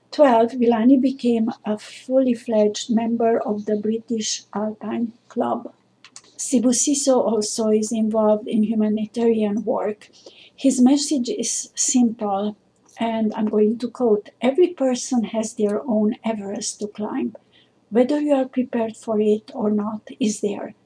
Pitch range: 220-250 Hz